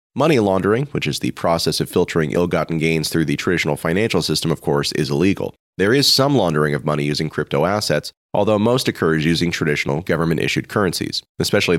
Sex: male